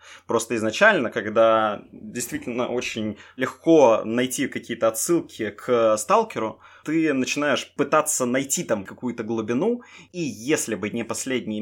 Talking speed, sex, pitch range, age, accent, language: 120 wpm, male, 110-135 Hz, 20-39, native, Russian